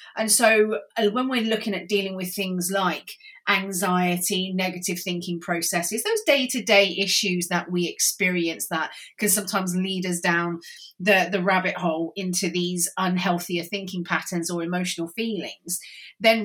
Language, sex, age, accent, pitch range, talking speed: English, female, 30-49, British, 175-215 Hz, 150 wpm